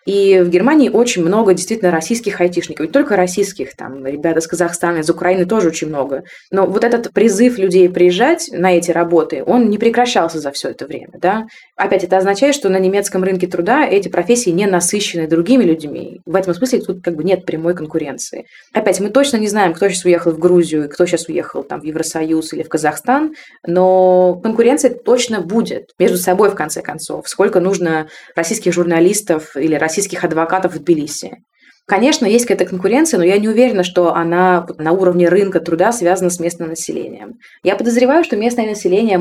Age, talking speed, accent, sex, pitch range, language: 20-39, 185 wpm, native, female, 170-205 Hz, Russian